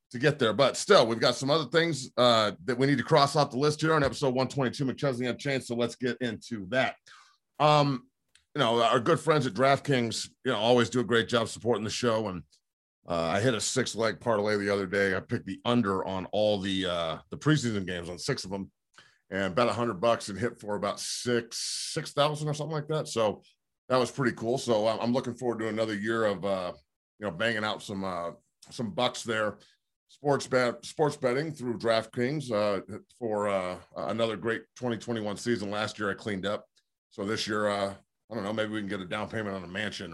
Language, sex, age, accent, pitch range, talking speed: English, male, 40-59, American, 100-130 Hz, 225 wpm